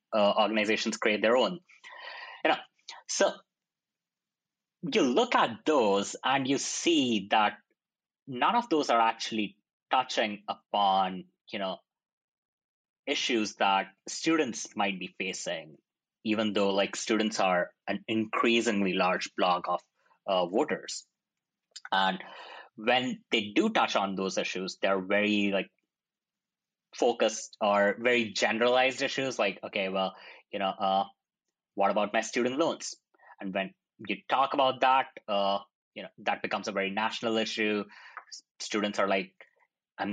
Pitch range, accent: 100-115 Hz, Indian